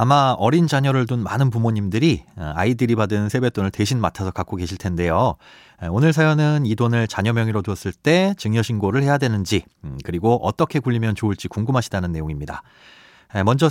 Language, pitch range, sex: Korean, 105-160 Hz, male